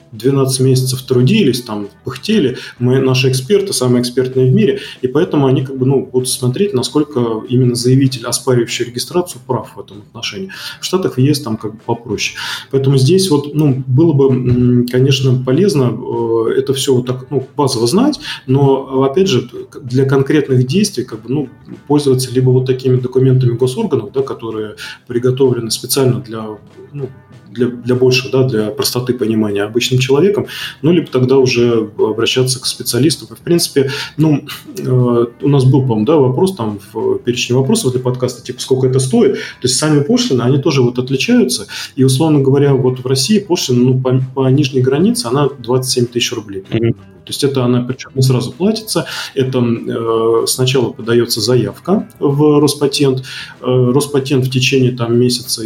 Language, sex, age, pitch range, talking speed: Russian, male, 20-39, 120-135 Hz, 165 wpm